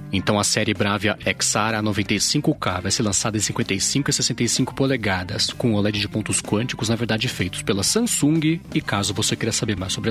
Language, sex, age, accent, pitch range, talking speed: Portuguese, male, 30-49, Brazilian, 100-130 Hz, 185 wpm